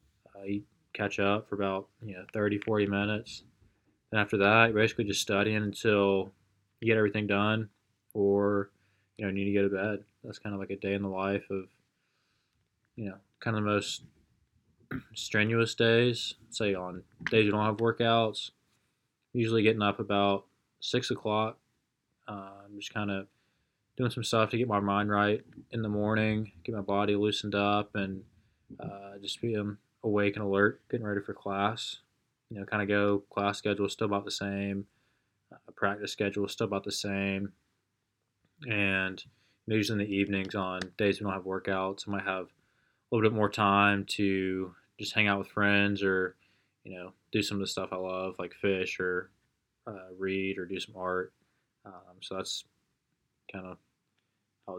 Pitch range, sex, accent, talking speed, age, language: 100-110 Hz, male, American, 175 wpm, 20-39, English